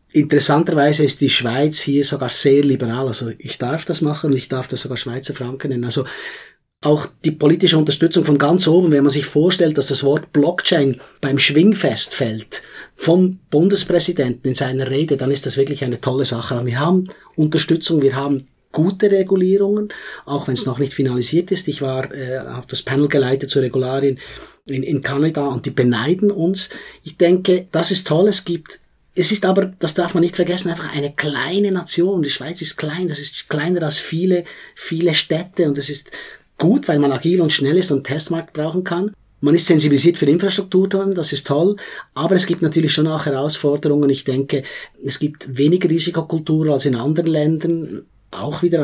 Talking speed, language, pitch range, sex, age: 190 wpm, German, 140-170 Hz, male, 30-49